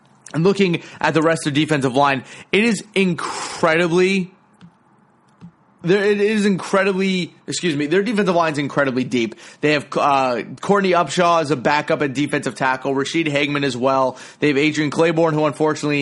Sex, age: male, 30-49